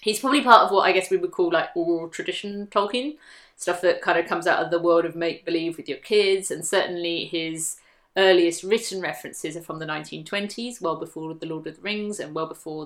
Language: English